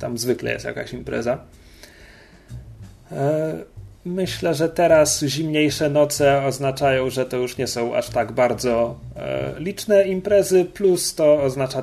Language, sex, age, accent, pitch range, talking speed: Polish, male, 30-49, native, 115-145 Hz, 120 wpm